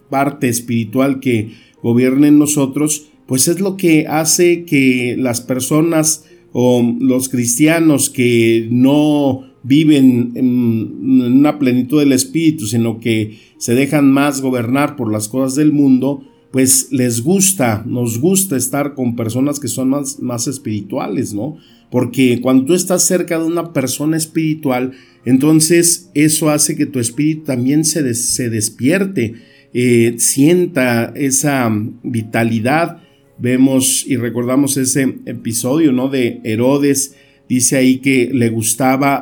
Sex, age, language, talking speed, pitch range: male, 50-69, Spanish, 130 wpm, 120-145 Hz